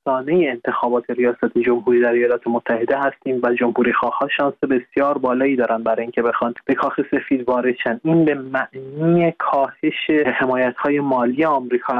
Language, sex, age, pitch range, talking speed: Persian, male, 20-39, 120-140 Hz, 145 wpm